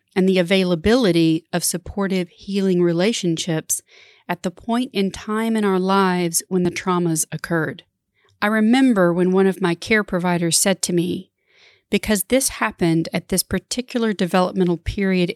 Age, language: 40-59, English